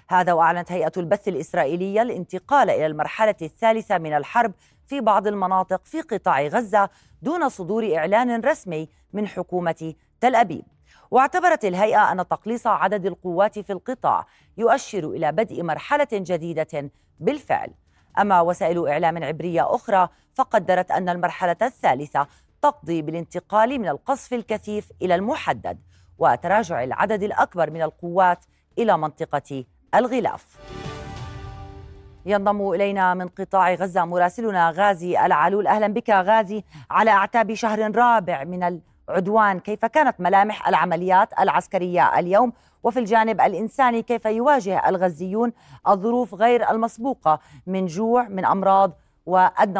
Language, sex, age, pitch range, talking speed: Arabic, female, 30-49, 170-225 Hz, 120 wpm